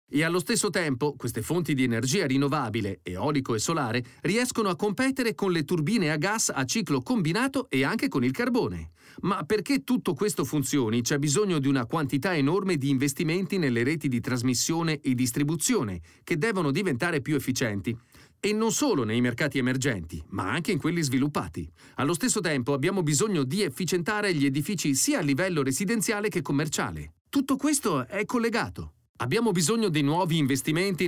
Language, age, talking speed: Italian, 40-59, 170 wpm